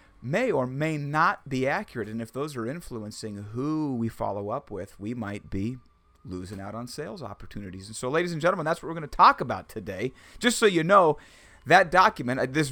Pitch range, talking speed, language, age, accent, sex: 110-155 Hz, 210 wpm, English, 30-49, American, male